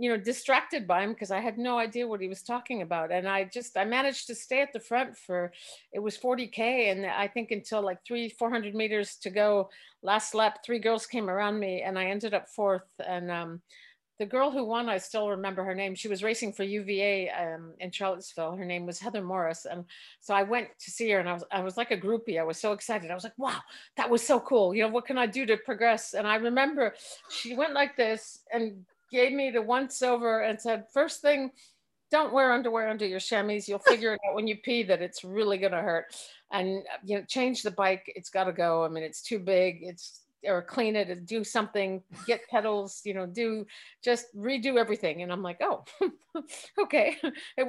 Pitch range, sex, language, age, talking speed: 190-245 Hz, female, English, 50-69, 230 wpm